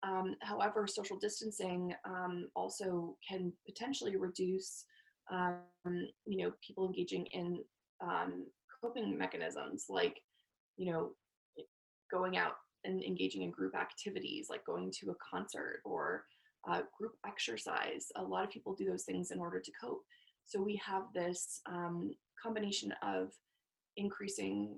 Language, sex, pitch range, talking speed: English, female, 180-240 Hz, 135 wpm